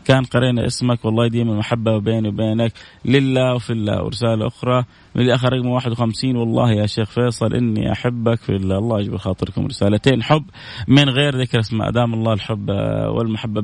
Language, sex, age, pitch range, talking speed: Arabic, male, 30-49, 115-140 Hz, 170 wpm